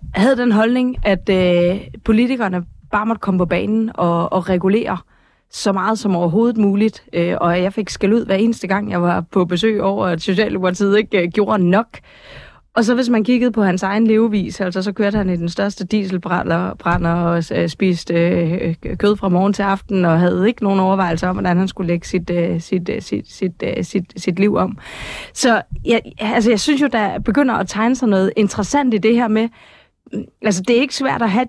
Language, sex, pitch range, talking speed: Danish, female, 185-230 Hz, 190 wpm